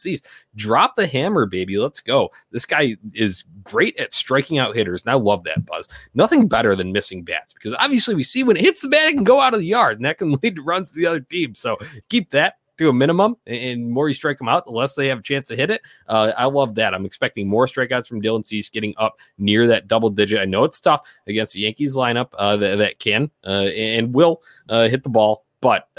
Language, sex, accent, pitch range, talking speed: English, male, American, 95-135 Hz, 250 wpm